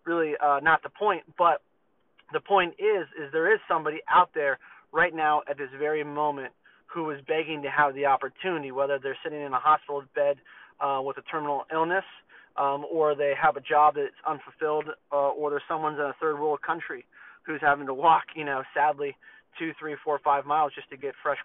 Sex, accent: male, American